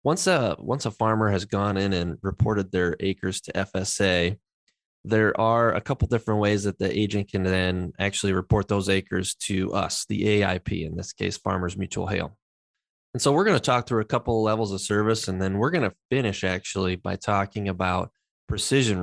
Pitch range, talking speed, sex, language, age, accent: 95-115 Hz, 200 wpm, male, English, 20-39, American